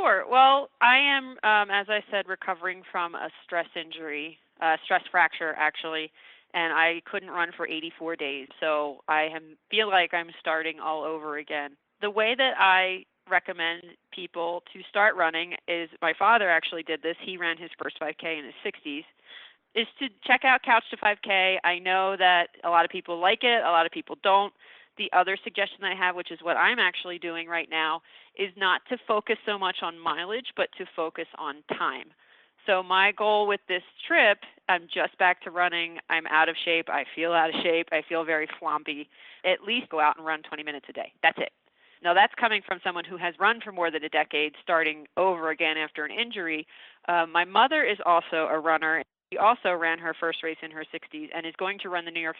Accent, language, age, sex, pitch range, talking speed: American, English, 30-49, female, 160-195 Hz, 210 wpm